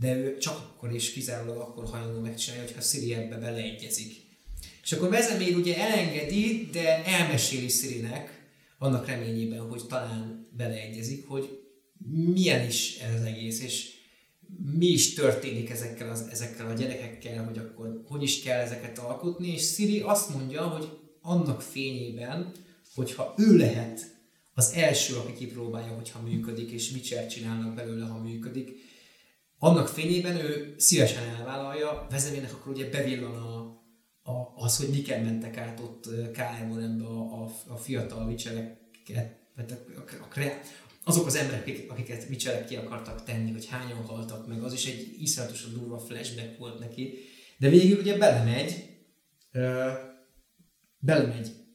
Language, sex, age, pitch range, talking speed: Hungarian, male, 30-49, 115-150 Hz, 145 wpm